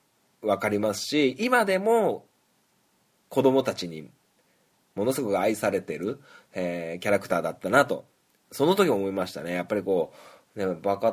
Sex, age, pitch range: male, 20-39, 95-140 Hz